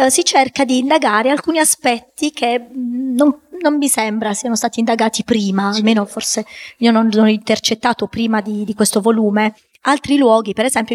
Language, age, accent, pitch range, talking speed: Italian, 20-39, native, 210-250 Hz, 165 wpm